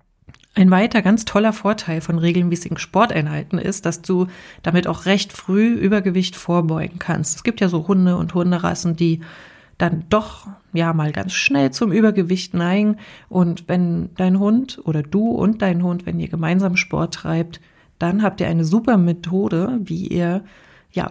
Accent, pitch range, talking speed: German, 170-210 Hz, 165 wpm